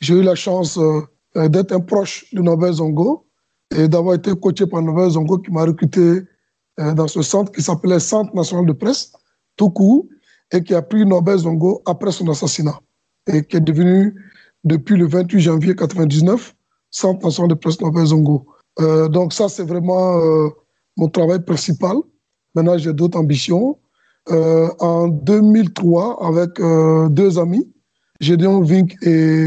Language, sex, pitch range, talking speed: French, male, 160-190 Hz, 165 wpm